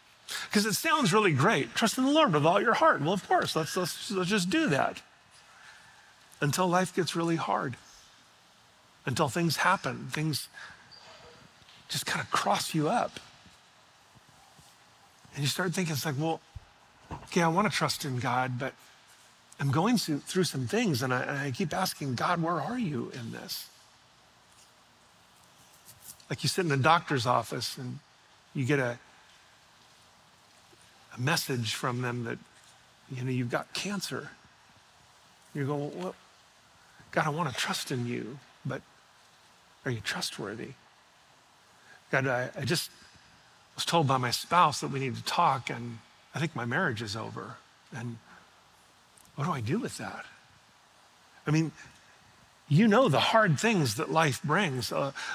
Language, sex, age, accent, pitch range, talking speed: English, male, 40-59, American, 130-180 Hz, 155 wpm